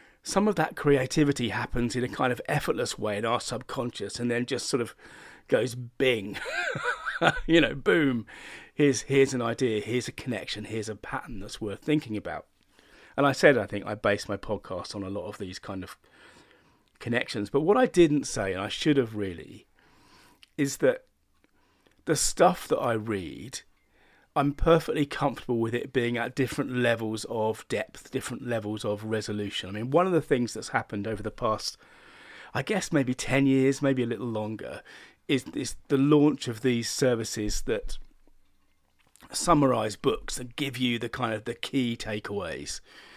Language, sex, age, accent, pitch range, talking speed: English, male, 30-49, British, 105-140 Hz, 175 wpm